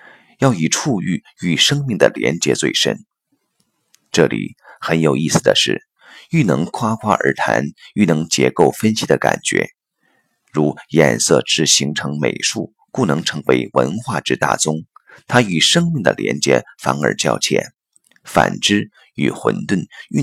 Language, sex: Chinese, male